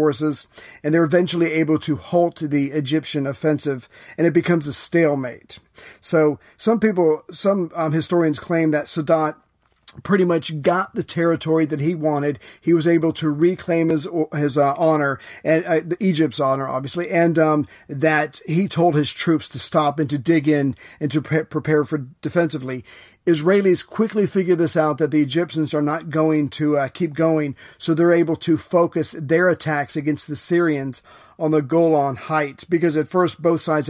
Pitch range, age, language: 150-165 Hz, 40-59, English